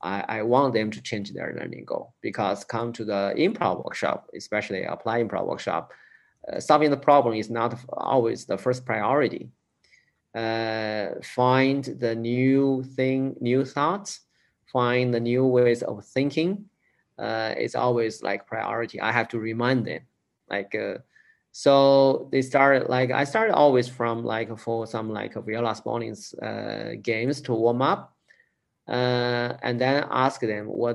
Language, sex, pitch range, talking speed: English, male, 110-130 Hz, 155 wpm